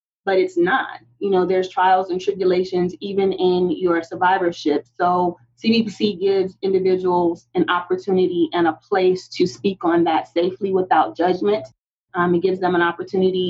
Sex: female